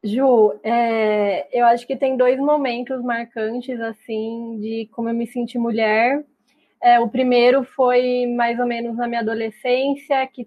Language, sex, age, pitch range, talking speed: Portuguese, female, 20-39, 230-265 Hz, 145 wpm